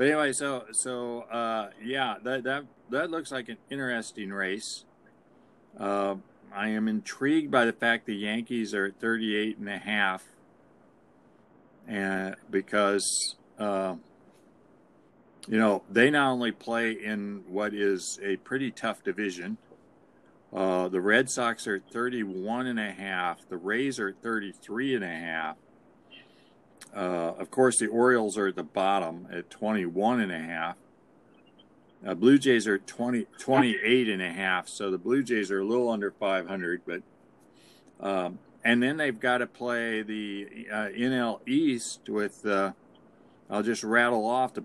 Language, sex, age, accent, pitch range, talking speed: English, male, 50-69, American, 100-125 Hz, 145 wpm